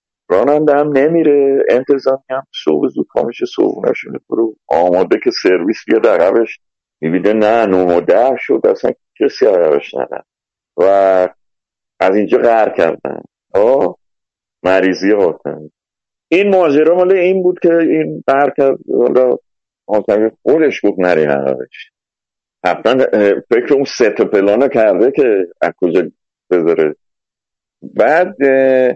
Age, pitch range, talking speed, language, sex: 50-69, 130-175 Hz, 115 wpm, Persian, male